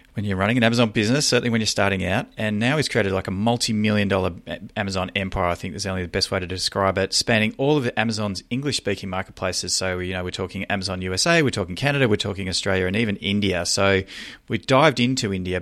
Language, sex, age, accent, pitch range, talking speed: English, male, 30-49, Australian, 95-120 Hz, 225 wpm